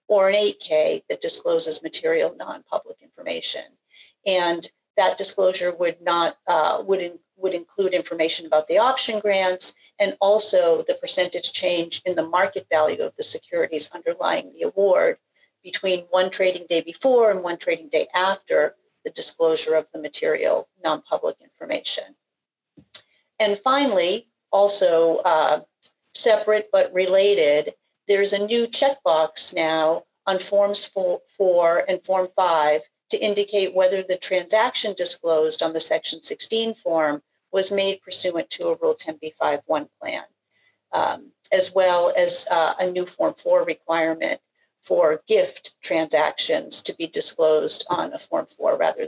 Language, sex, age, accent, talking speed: English, female, 40-59, American, 140 wpm